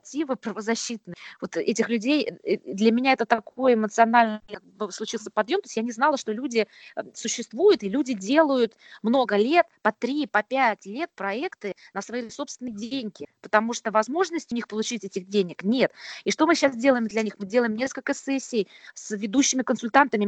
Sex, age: female, 20-39